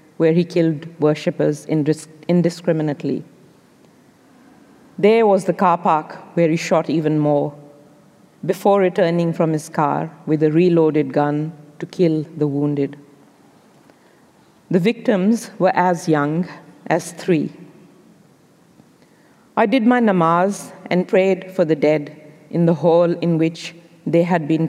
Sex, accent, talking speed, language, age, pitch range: female, Indian, 125 wpm, English, 50-69, 155-185 Hz